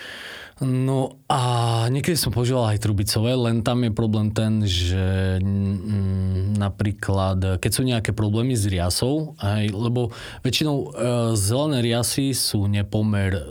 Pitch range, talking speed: 90-105 Hz, 130 wpm